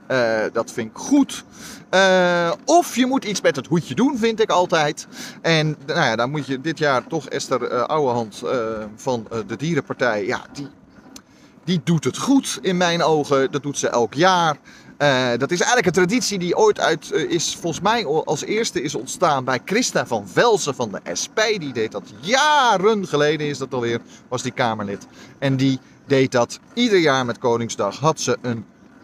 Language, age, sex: Dutch, 30-49, male